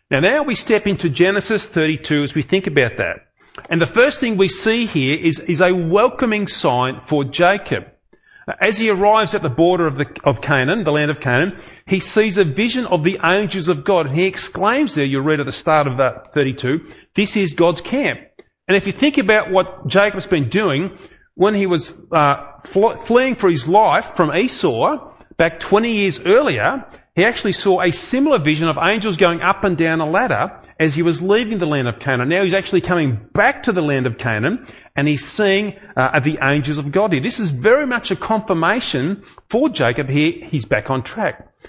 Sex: male